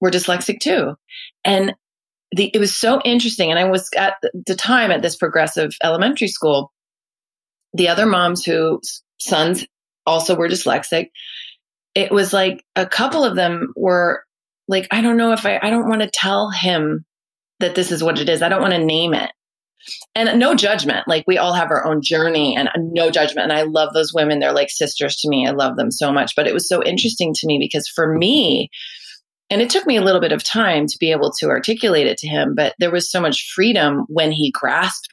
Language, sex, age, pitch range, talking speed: English, female, 30-49, 165-225 Hz, 210 wpm